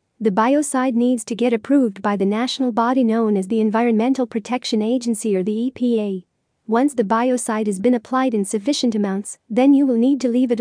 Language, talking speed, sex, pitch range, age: English, 200 wpm, female, 215-255 Hz, 40-59